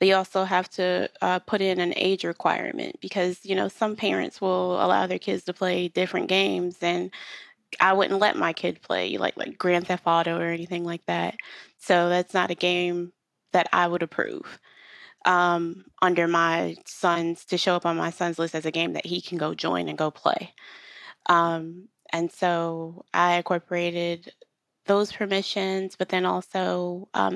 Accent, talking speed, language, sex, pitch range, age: American, 180 wpm, English, female, 170-185 Hz, 20-39